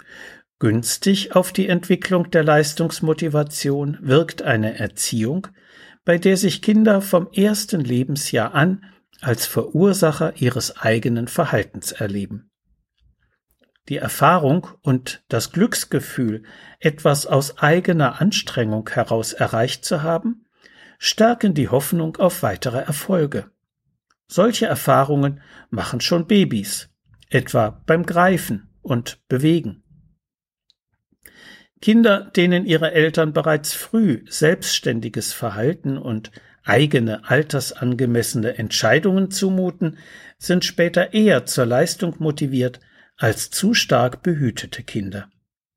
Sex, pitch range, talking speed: male, 125-175 Hz, 100 wpm